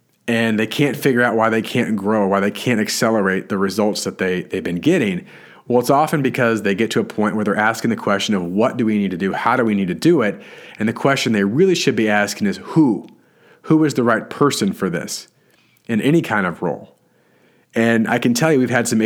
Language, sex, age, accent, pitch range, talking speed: English, male, 40-59, American, 110-145 Hz, 245 wpm